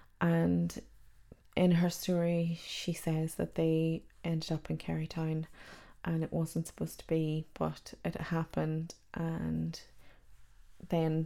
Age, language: 20-39, English